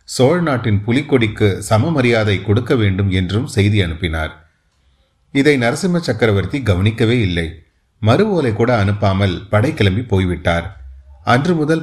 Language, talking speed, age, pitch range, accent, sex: Tamil, 115 wpm, 30-49, 100-120 Hz, native, male